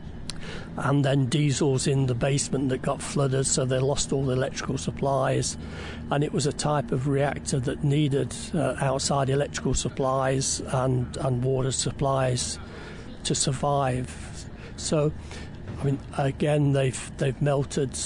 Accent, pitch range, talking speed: British, 130-145 Hz, 140 wpm